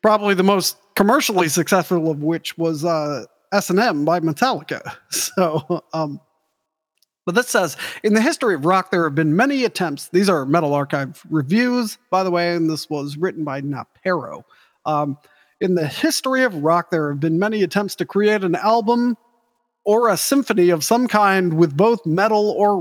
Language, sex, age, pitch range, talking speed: English, male, 40-59, 165-215 Hz, 175 wpm